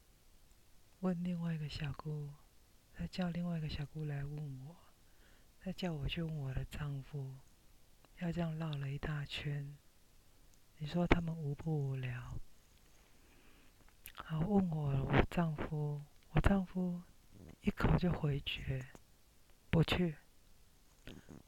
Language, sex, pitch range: Chinese, female, 140-175 Hz